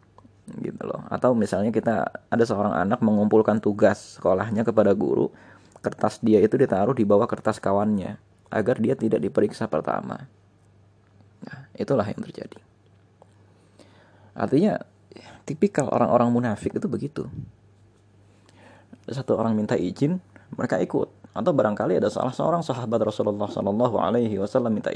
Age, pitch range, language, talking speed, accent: 20-39, 100-115 Hz, Indonesian, 125 wpm, native